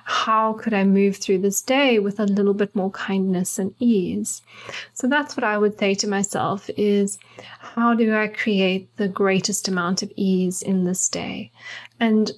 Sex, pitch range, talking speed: female, 190-215 Hz, 180 wpm